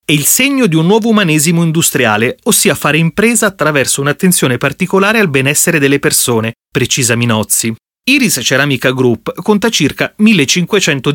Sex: male